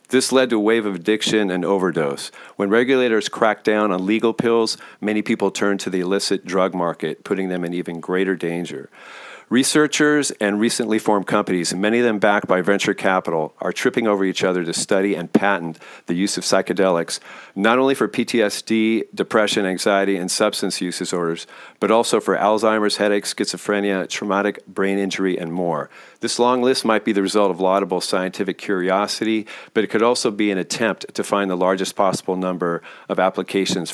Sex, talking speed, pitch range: male, 180 wpm, 95-110 Hz